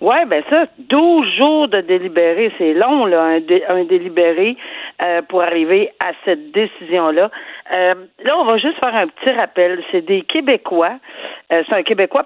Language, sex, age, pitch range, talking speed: French, female, 50-69, 180-265 Hz, 175 wpm